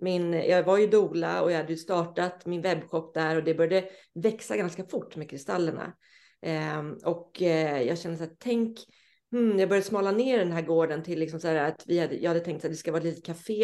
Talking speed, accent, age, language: 230 wpm, native, 30-49, Swedish